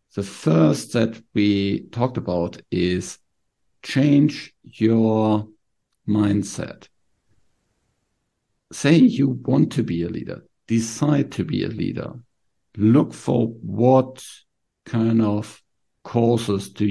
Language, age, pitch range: English, 50-69, 100-125 Hz